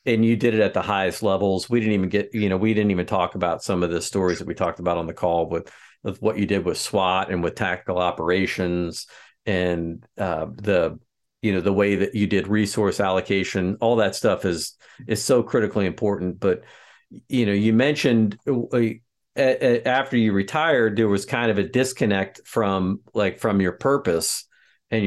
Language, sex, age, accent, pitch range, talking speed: English, male, 50-69, American, 95-110 Hz, 195 wpm